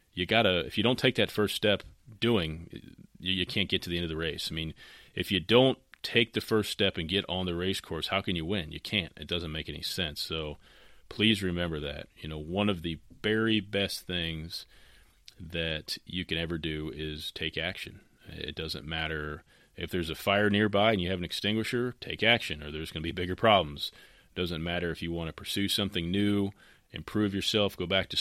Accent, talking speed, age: American, 220 wpm, 30-49